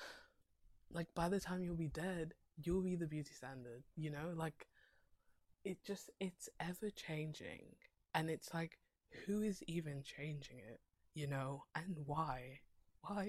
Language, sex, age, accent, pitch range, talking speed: English, female, 20-39, British, 140-195 Hz, 150 wpm